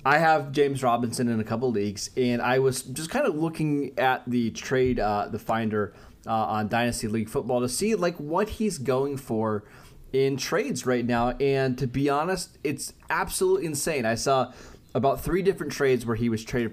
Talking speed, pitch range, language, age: 195 wpm, 115-145 Hz, English, 20-39